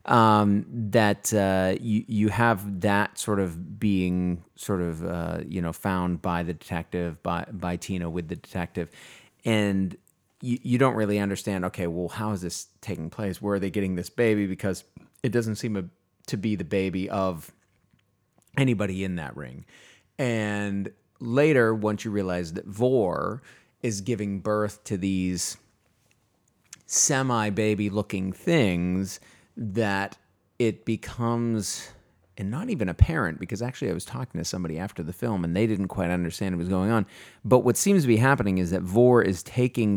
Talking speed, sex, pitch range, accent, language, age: 165 wpm, male, 90-115 Hz, American, English, 30-49